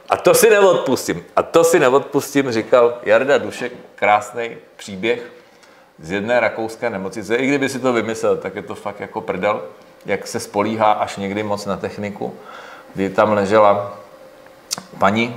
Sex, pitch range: male, 95-115 Hz